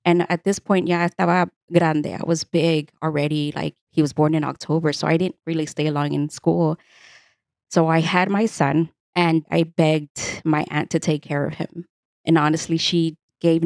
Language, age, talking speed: English, 20-39, 195 wpm